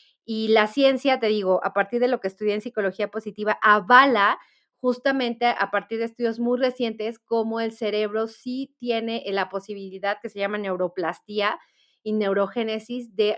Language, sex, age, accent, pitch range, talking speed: Spanish, female, 30-49, Mexican, 205-245 Hz, 160 wpm